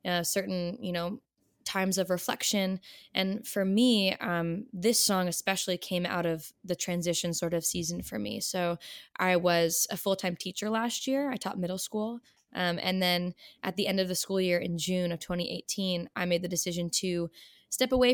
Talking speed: 190 wpm